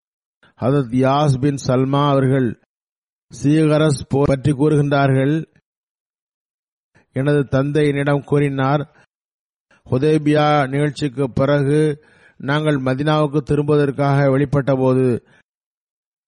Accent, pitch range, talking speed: native, 135-150 Hz, 60 wpm